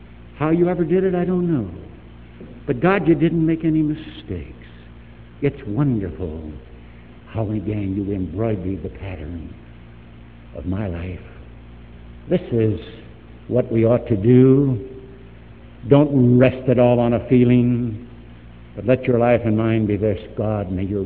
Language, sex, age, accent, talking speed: English, male, 70-89, American, 145 wpm